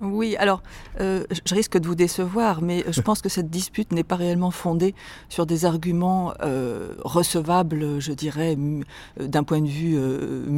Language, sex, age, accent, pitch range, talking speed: French, female, 50-69, French, 155-190 Hz, 170 wpm